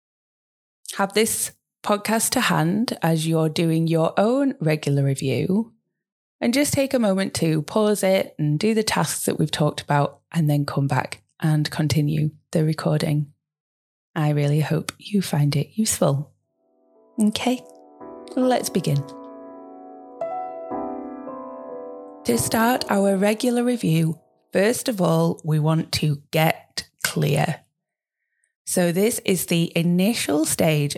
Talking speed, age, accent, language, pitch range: 125 wpm, 20-39, British, English, 150-195 Hz